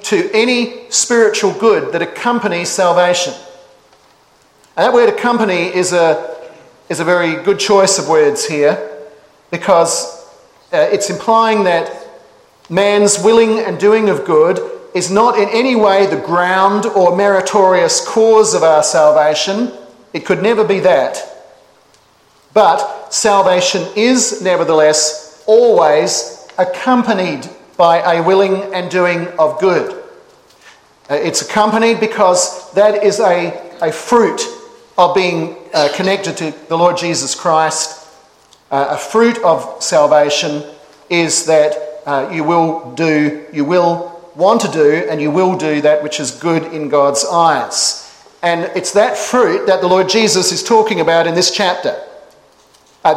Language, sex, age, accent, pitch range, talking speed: English, male, 40-59, Australian, 160-215 Hz, 140 wpm